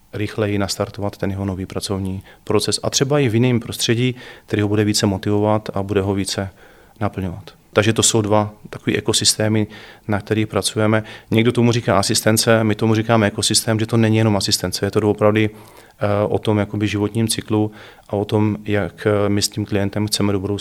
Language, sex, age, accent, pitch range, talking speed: Czech, male, 40-59, native, 105-115 Hz, 185 wpm